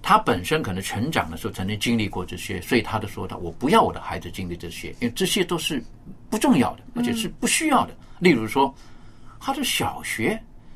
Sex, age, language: male, 50-69, Chinese